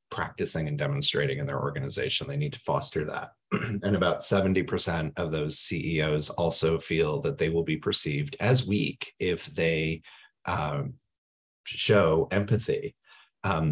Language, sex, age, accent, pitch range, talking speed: English, male, 40-59, American, 75-105 Hz, 140 wpm